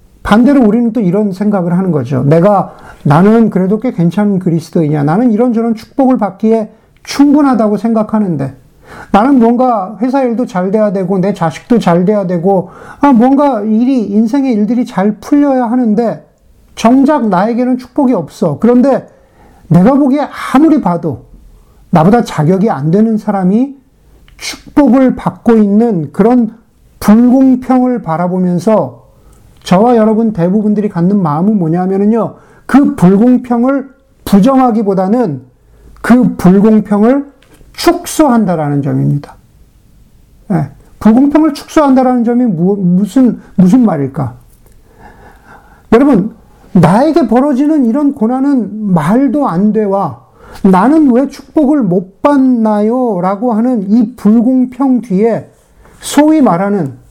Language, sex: Korean, male